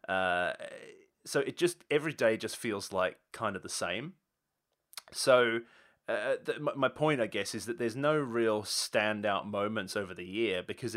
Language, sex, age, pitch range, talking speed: English, male, 30-49, 95-110 Hz, 175 wpm